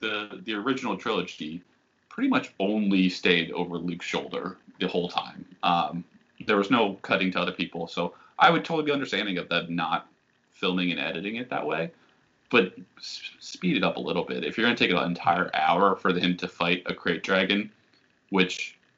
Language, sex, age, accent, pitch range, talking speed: English, male, 20-39, American, 90-95 Hz, 190 wpm